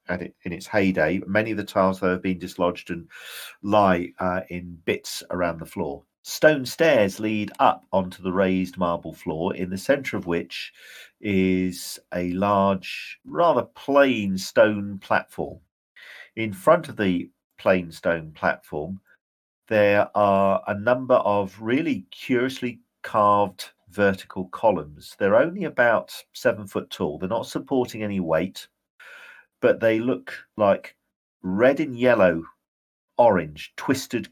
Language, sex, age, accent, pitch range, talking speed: English, male, 50-69, British, 95-110 Hz, 135 wpm